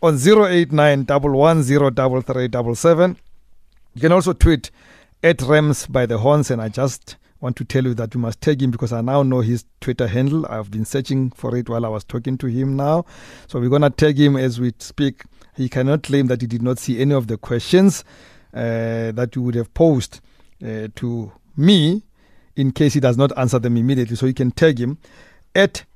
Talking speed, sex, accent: 200 wpm, male, South African